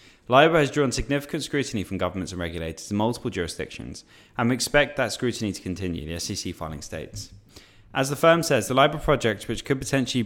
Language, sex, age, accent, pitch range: Japanese, male, 10-29, British, 95-120 Hz